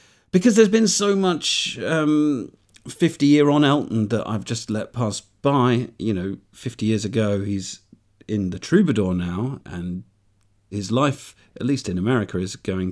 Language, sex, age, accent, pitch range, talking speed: English, male, 50-69, British, 100-125 Hz, 155 wpm